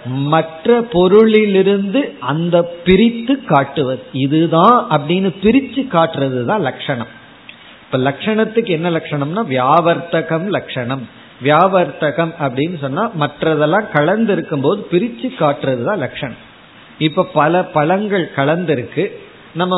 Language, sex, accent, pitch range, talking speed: Tamil, male, native, 145-195 Hz, 95 wpm